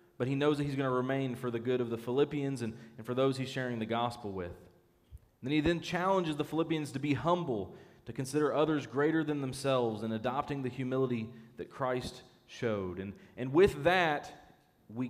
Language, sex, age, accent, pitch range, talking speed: English, male, 30-49, American, 115-145 Hz, 200 wpm